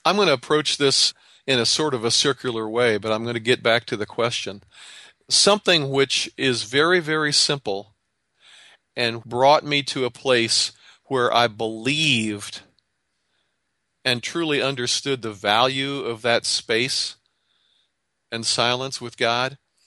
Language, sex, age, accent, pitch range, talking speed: English, male, 40-59, American, 115-145 Hz, 145 wpm